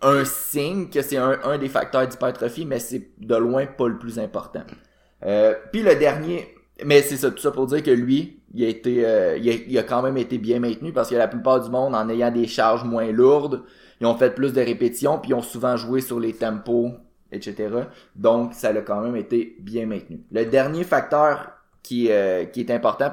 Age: 20-39